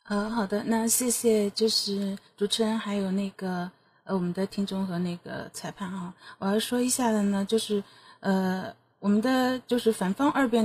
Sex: female